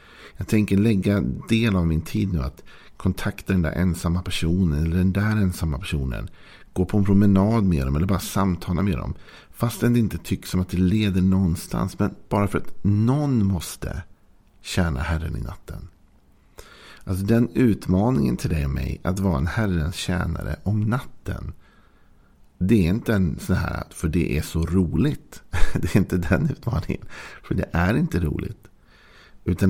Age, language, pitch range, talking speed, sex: 50-69, Swedish, 80-100 Hz, 170 wpm, male